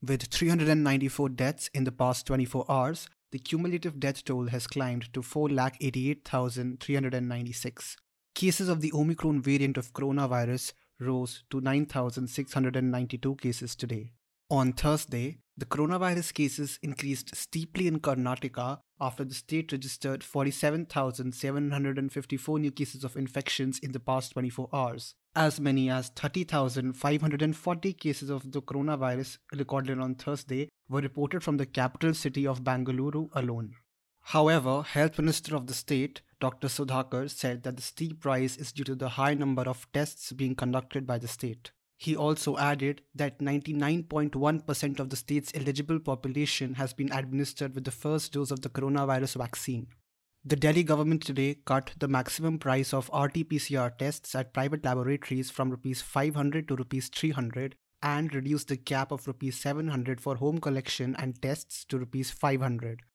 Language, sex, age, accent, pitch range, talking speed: English, male, 30-49, Indian, 130-145 Hz, 145 wpm